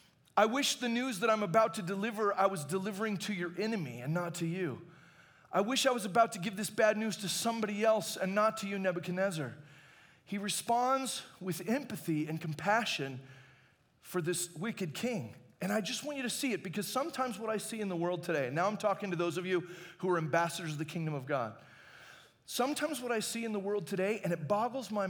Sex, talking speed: male, 220 wpm